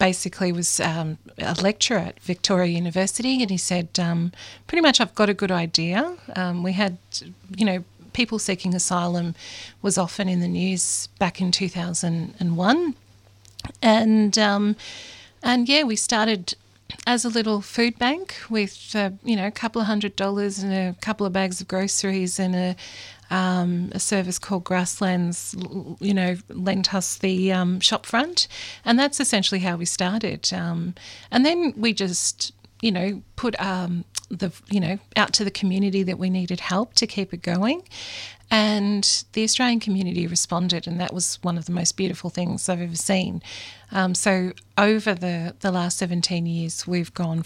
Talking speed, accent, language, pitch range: 170 wpm, Australian, English, 175-210 Hz